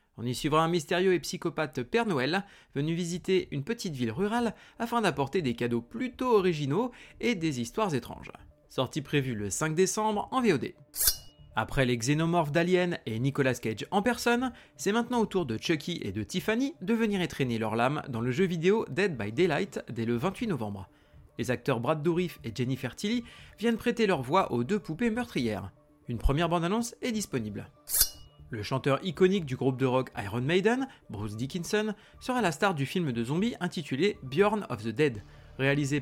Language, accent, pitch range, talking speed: French, French, 125-205 Hz, 185 wpm